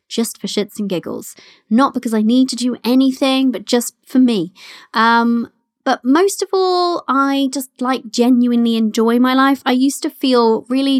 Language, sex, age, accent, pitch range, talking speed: English, female, 20-39, British, 205-265 Hz, 180 wpm